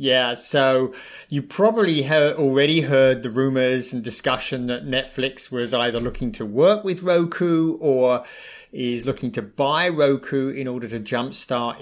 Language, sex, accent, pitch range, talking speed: English, male, British, 125-160 Hz, 150 wpm